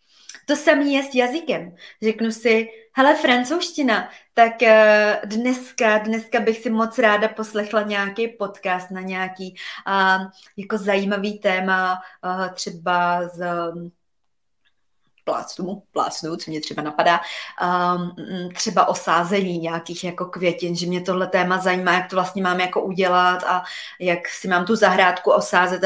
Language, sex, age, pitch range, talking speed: Czech, female, 20-39, 180-225 Hz, 135 wpm